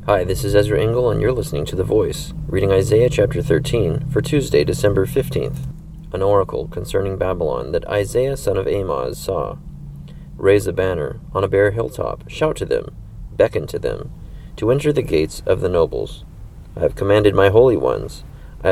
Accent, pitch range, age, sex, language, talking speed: American, 95-145 Hz, 30-49, male, English, 180 wpm